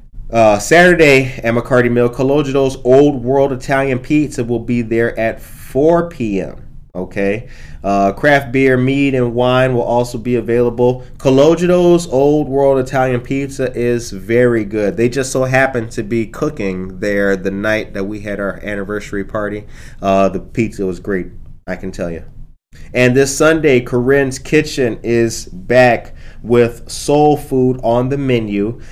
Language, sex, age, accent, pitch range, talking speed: English, male, 30-49, American, 105-130 Hz, 150 wpm